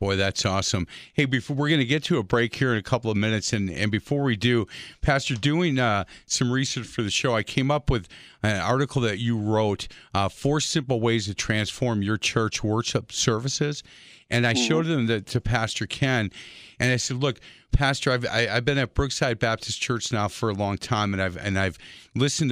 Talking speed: 215 wpm